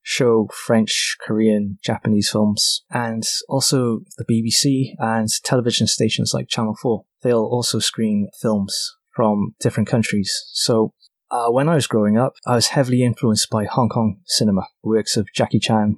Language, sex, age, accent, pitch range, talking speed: English, male, 20-39, British, 110-130 Hz, 155 wpm